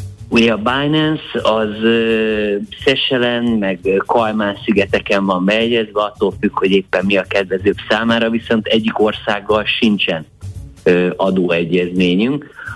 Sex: male